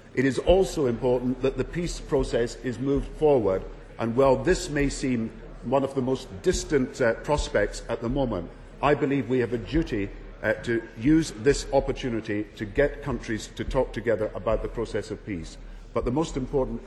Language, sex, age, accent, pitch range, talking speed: English, male, 50-69, British, 110-130 Hz, 185 wpm